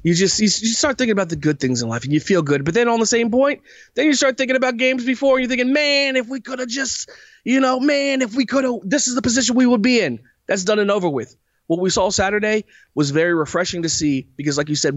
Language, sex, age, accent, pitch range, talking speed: English, male, 30-49, American, 160-230 Hz, 290 wpm